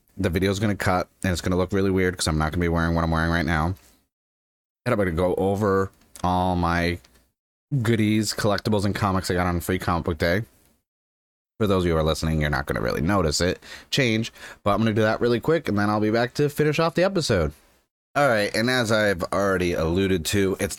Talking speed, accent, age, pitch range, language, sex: 250 wpm, American, 30-49, 80-105 Hz, English, male